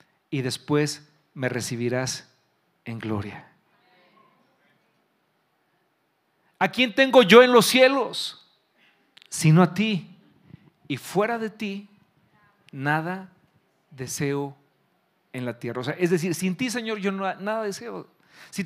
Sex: male